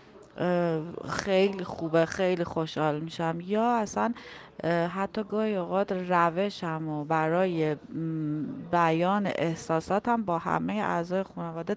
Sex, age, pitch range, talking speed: female, 30-49, 160-190 Hz, 95 wpm